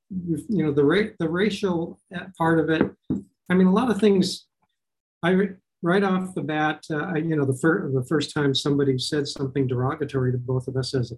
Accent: American